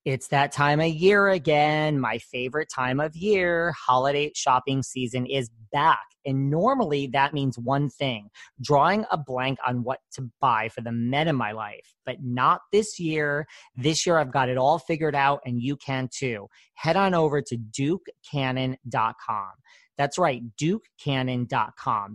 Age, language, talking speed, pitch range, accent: 30-49, English, 160 wpm, 125-160 Hz, American